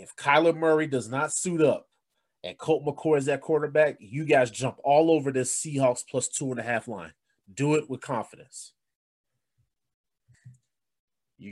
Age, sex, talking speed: 30-49, male, 160 wpm